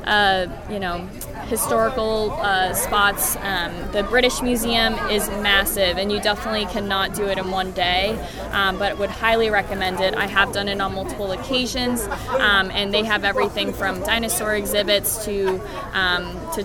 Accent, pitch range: American, 195-220 Hz